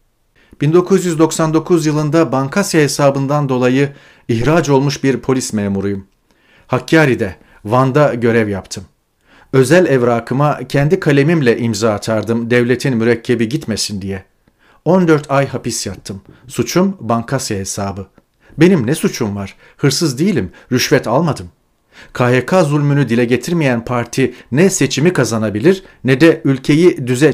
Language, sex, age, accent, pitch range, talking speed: Turkish, male, 40-59, native, 115-155 Hz, 110 wpm